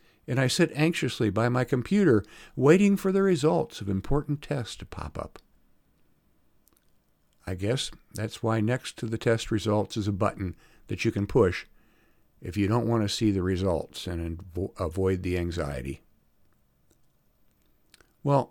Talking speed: 150 wpm